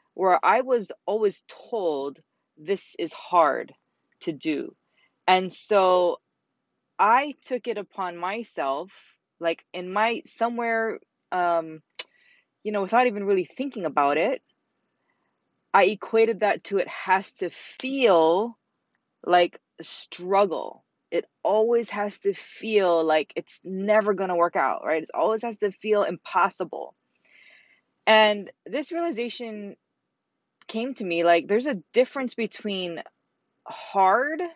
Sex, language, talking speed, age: female, English, 125 wpm, 20-39